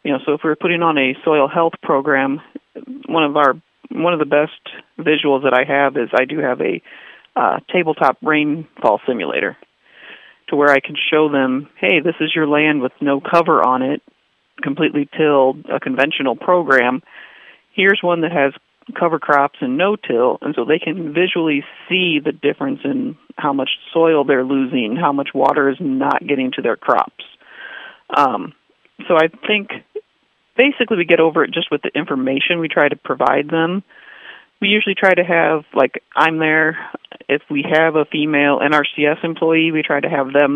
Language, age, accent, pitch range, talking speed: English, 40-59, American, 140-170 Hz, 180 wpm